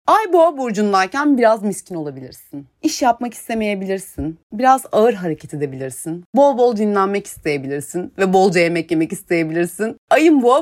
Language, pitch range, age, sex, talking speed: Turkish, 175-260 Hz, 30-49, female, 135 wpm